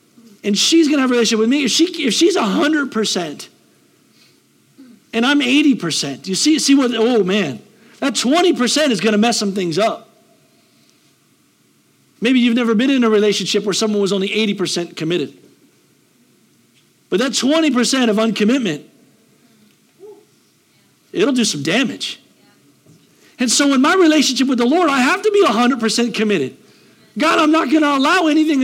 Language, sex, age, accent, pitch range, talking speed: English, male, 50-69, American, 220-280 Hz, 155 wpm